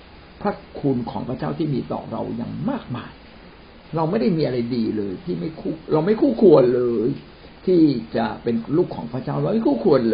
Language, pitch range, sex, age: Thai, 115-175 Hz, male, 60-79